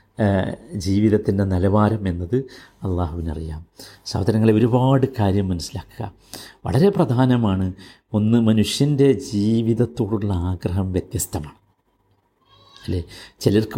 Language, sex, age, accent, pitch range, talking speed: Malayalam, male, 50-69, native, 100-140 Hz, 70 wpm